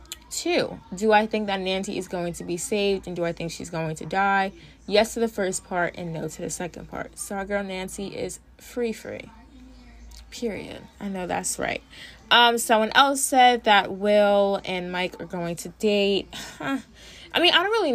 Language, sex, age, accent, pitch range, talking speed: English, female, 20-39, American, 175-220 Hz, 195 wpm